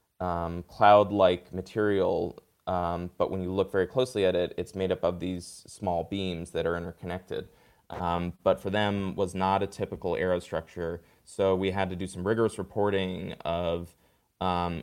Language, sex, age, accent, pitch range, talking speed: English, male, 20-39, American, 85-95 Hz, 180 wpm